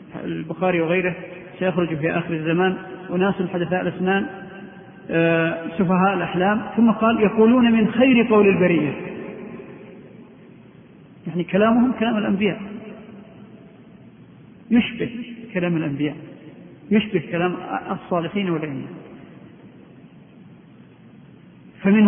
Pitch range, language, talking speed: 175-210 Hz, Arabic, 80 wpm